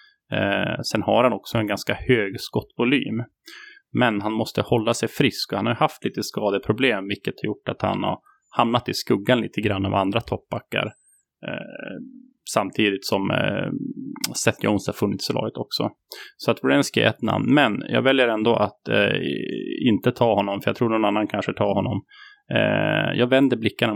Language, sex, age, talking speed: English, male, 30-49, 170 wpm